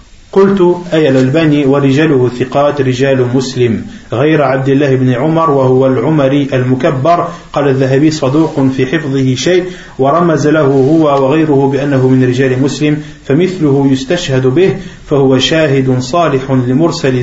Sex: male